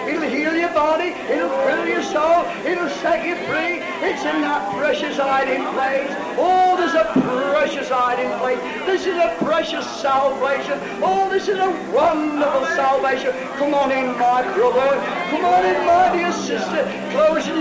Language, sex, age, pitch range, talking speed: English, male, 60-79, 285-330 Hz, 160 wpm